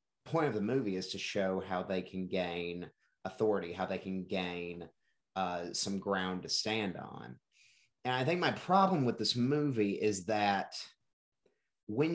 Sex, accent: male, American